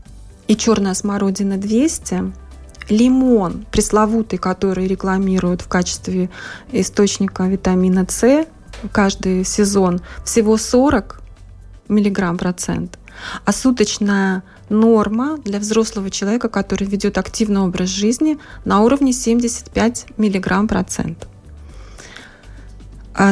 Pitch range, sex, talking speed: 185-220 Hz, female, 85 wpm